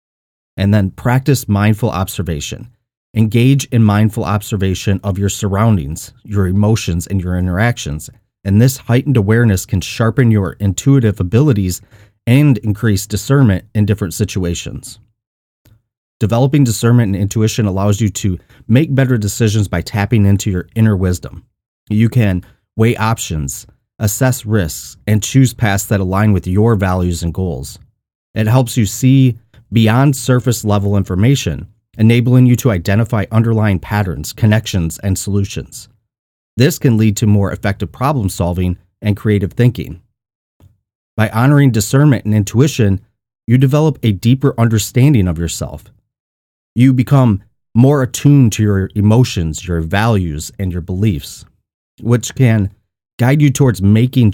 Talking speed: 135 wpm